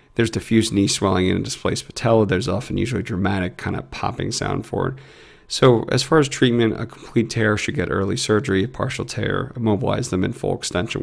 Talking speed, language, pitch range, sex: 210 wpm, English, 100-120 Hz, male